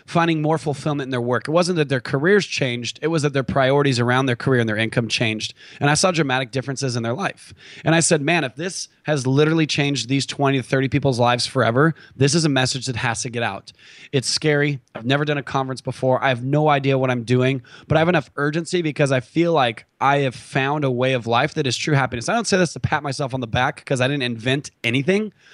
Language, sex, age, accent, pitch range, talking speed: English, male, 20-39, American, 125-150 Hz, 250 wpm